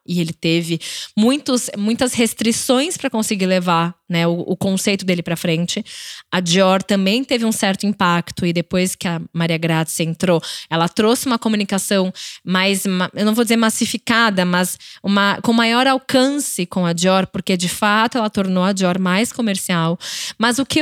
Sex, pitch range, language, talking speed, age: female, 180-230 Hz, Portuguese, 175 wpm, 10-29